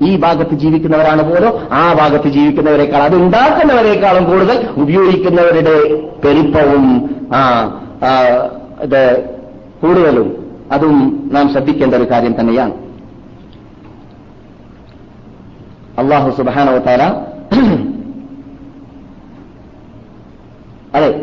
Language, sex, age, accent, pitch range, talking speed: Malayalam, male, 40-59, native, 175-255 Hz, 65 wpm